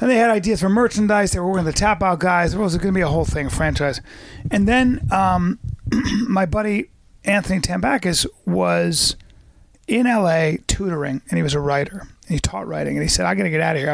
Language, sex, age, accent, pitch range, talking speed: English, male, 30-49, American, 145-190 Hz, 230 wpm